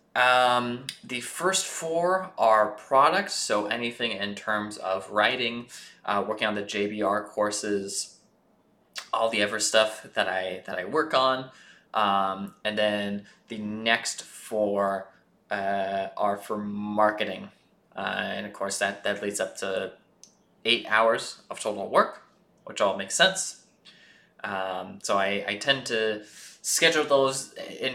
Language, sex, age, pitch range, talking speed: English, male, 20-39, 100-120 Hz, 140 wpm